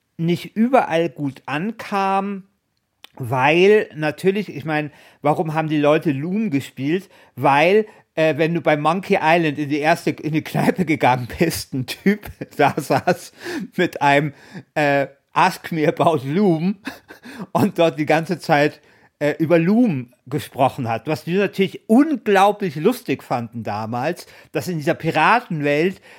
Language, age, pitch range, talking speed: German, 50-69, 145-190 Hz, 135 wpm